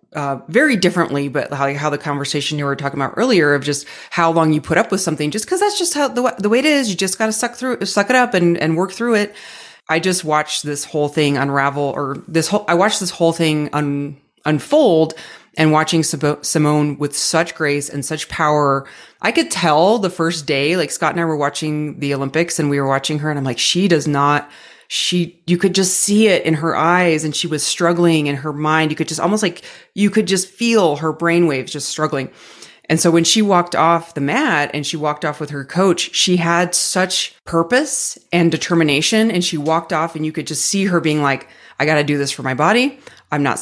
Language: English